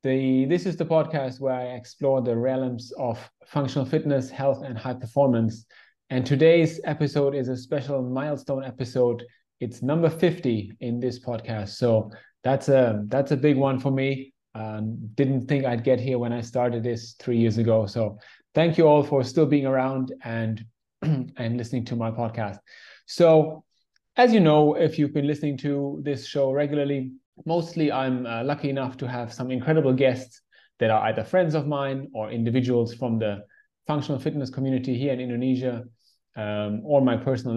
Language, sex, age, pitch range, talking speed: English, male, 30-49, 120-140 Hz, 175 wpm